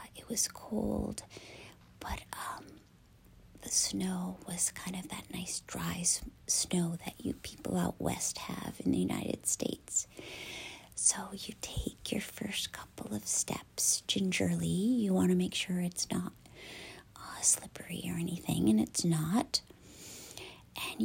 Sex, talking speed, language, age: female, 135 wpm, English, 40-59